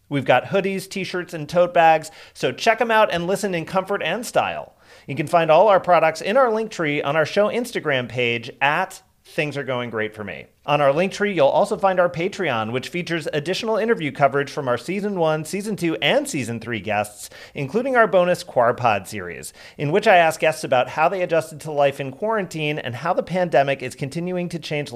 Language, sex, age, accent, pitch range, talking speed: English, male, 40-59, American, 135-195 Hz, 210 wpm